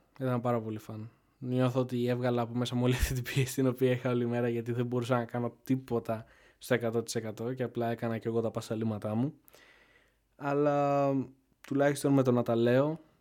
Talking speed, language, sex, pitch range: 190 wpm, Greek, male, 115-130 Hz